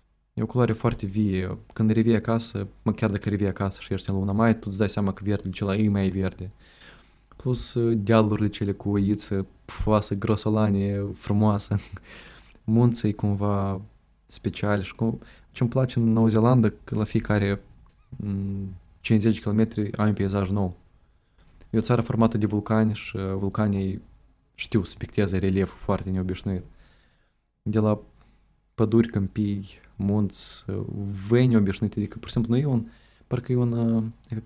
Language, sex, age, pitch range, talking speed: Romanian, male, 20-39, 95-115 Hz, 155 wpm